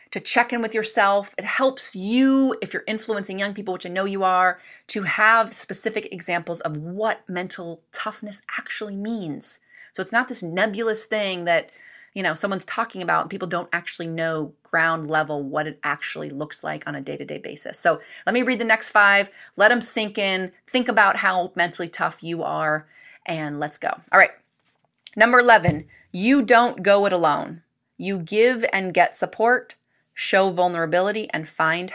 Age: 30-49